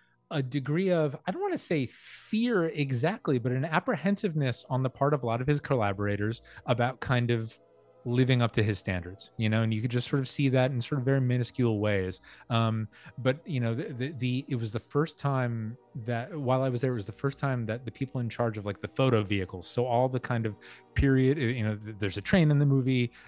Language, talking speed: English, 235 wpm